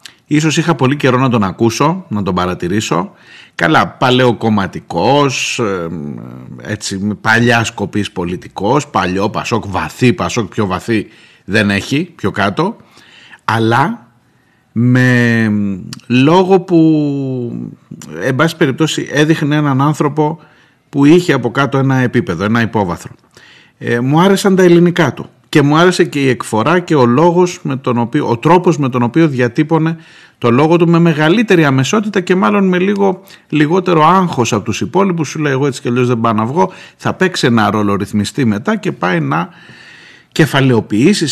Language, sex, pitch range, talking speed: Greek, male, 115-165 Hz, 150 wpm